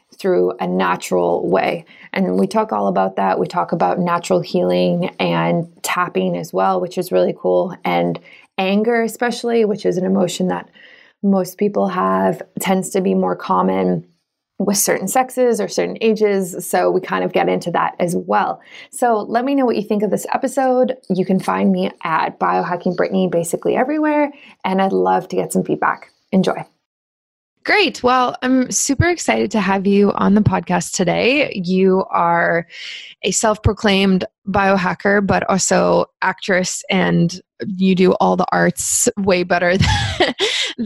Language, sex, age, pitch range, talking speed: English, female, 20-39, 175-230 Hz, 160 wpm